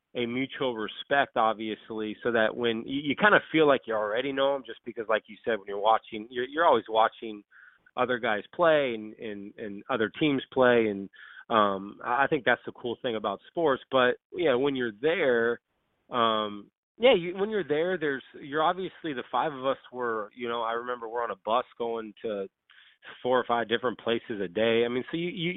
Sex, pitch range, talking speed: male, 110-135 Hz, 210 wpm